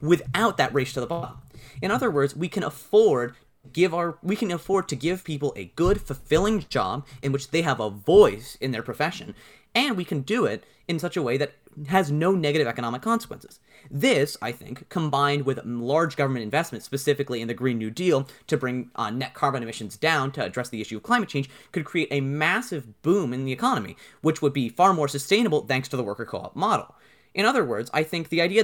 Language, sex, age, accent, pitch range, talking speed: English, male, 30-49, American, 130-170 Hz, 215 wpm